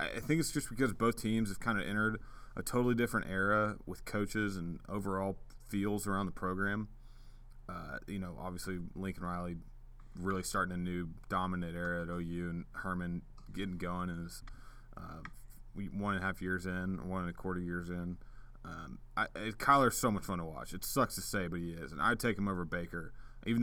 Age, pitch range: 30-49, 90-120 Hz